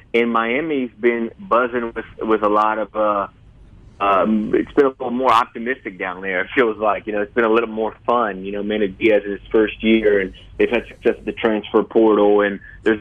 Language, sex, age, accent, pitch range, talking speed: English, male, 30-49, American, 100-115 Hz, 215 wpm